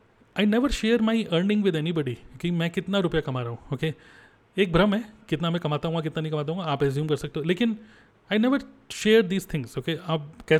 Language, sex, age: Hindi, male, 30-49